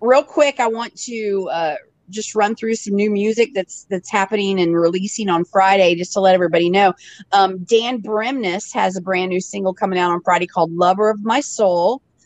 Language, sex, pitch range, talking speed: English, female, 175-220 Hz, 200 wpm